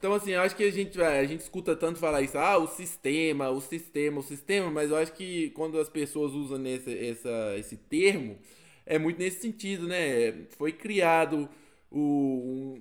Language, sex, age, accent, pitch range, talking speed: Portuguese, male, 20-39, Brazilian, 145-190 Hz, 190 wpm